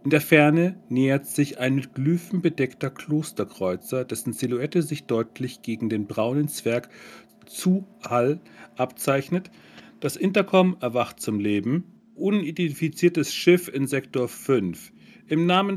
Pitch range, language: 115-160 Hz, German